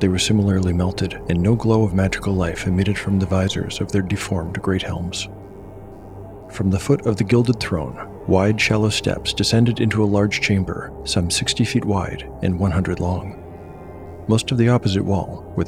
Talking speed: 180 wpm